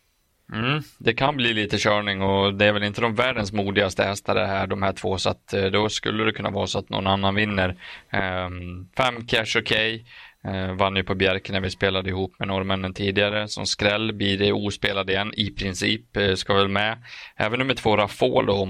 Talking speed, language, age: 200 wpm, Swedish, 20-39